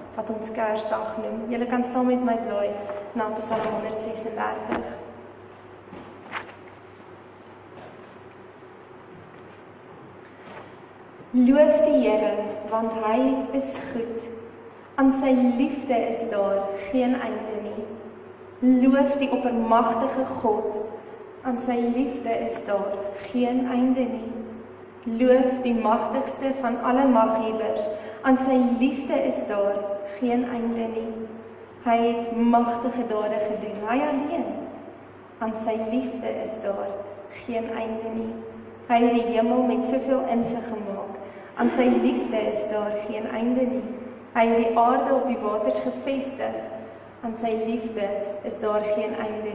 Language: English